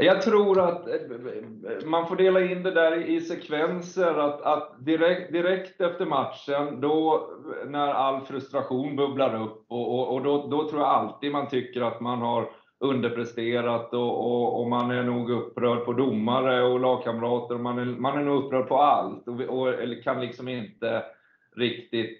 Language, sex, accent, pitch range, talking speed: Swedish, male, native, 120-150 Hz, 175 wpm